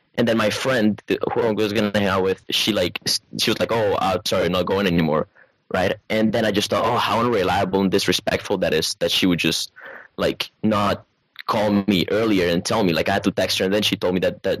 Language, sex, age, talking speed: English, male, 20-39, 255 wpm